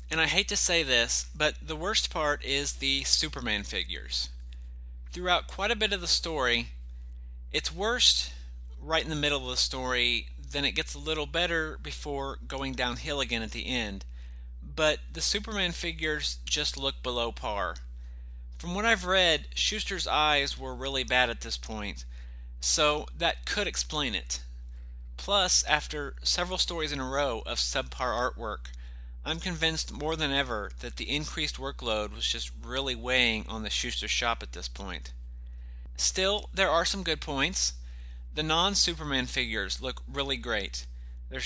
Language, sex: English, male